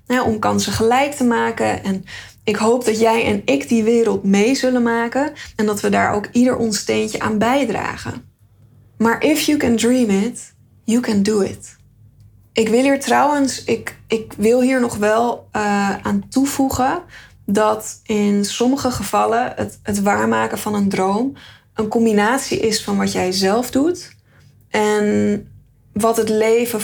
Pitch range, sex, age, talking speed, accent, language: 190-235 Hz, female, 20-39, 165 wpm, Dutch, Dutch